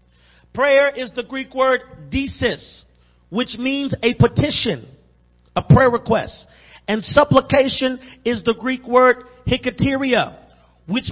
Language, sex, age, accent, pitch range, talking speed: English, male, 40-59, American, 180-265 Hz, 115 wpm